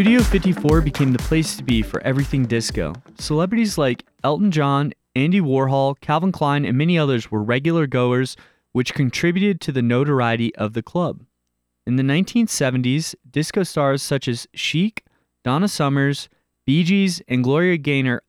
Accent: American